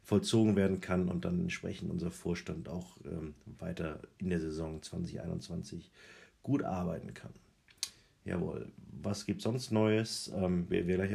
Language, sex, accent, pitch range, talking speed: German, male, German, 85-95 Hz, 145 wpm